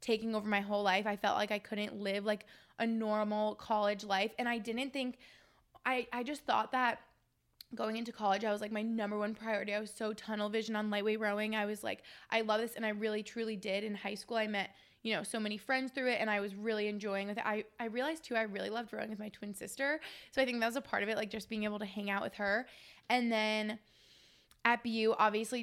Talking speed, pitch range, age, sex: 255 wpm, 210-240 Hz, 20-39, female